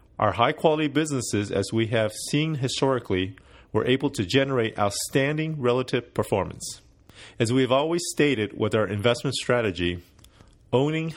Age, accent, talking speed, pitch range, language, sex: 30-49, American, 135 wpm, 95-130 Hz, English, male